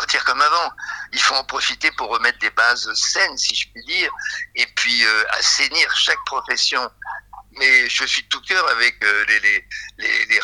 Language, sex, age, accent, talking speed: French, male, 50-69, French, 190 wpm